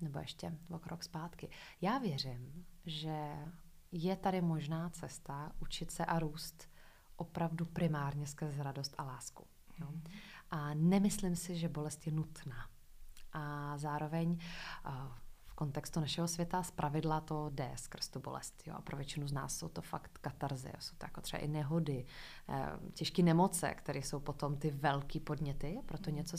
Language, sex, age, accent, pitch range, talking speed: Czech, female, 20-39, native, 150-180 Hz, 160 wpm